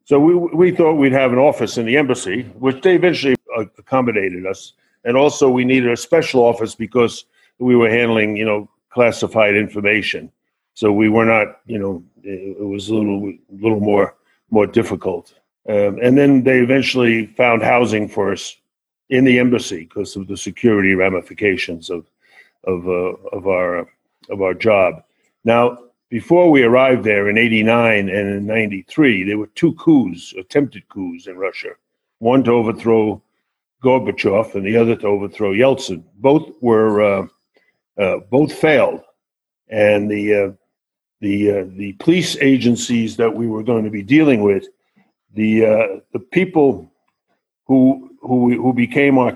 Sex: male